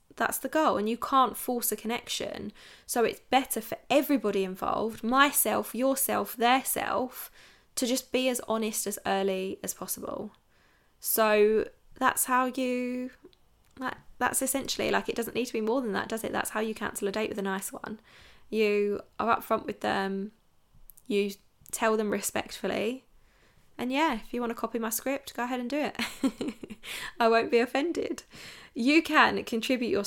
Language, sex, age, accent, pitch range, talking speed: English, female, 10-29, British, 205-250 Hz, 175 wpm